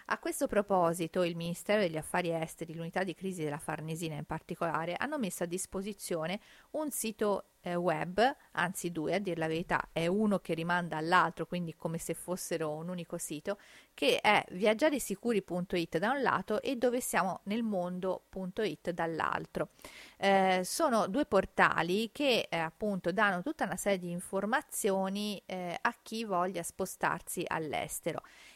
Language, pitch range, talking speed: Italian, 170-220 Hz, 145 wpm